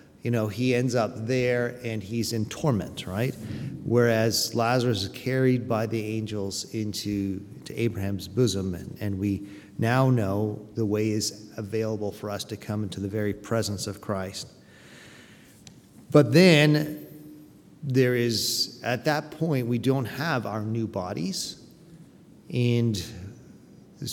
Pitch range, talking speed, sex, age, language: 110-135 Hz, 140 wpm, male, 40-59, English